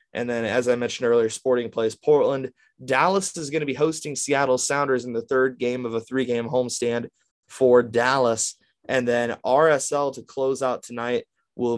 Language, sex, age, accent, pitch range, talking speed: English, male, 20-39, American, 120-140 Hz, 185 wpm